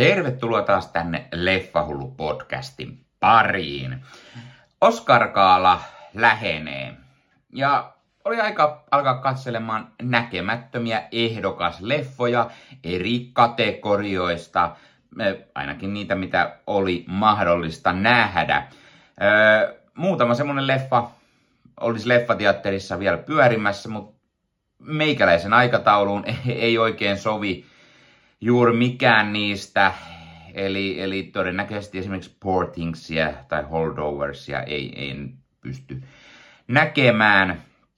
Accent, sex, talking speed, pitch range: native, male, 80 wpm, 75-115 Hz